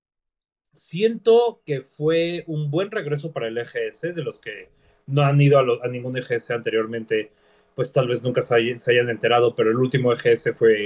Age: 30-49